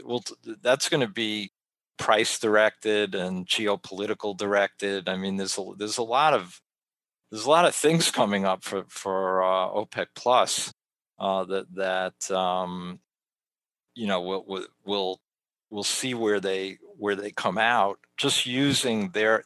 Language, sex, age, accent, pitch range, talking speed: English, male, 50-69, American, 95-110 Hz, 150 wpm